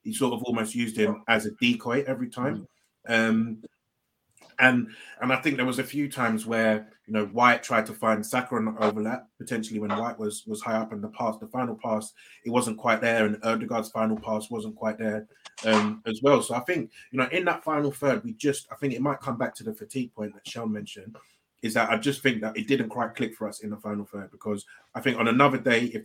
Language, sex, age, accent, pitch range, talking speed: English, male, 30-49, British, 105-125 Hz, 240 wpm